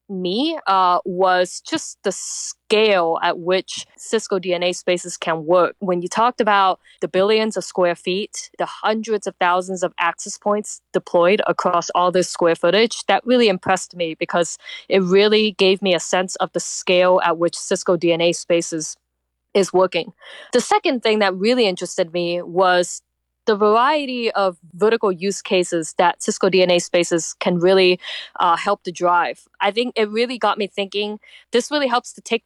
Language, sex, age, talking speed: English, female, 20-39, 170 wpm